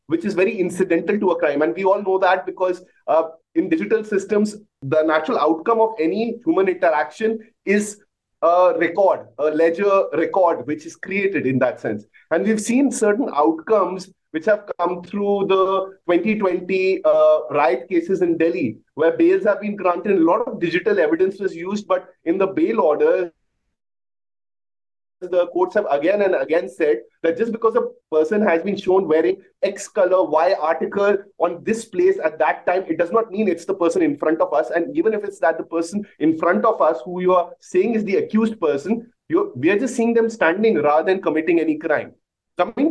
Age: 30-49